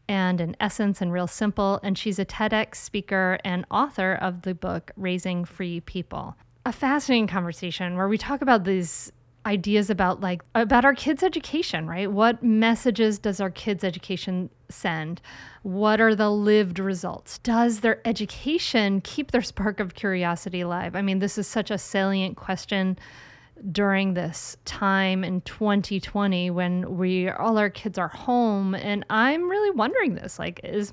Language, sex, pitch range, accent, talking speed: English, female, 185-230 Hz, American, 160 wpm